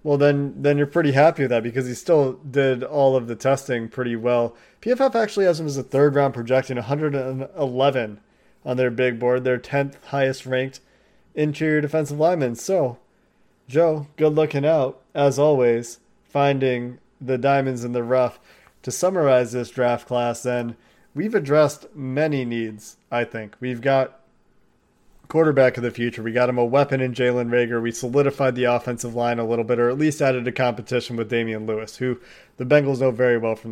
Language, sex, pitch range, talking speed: English, male, 120-140 Hz, 180 wpm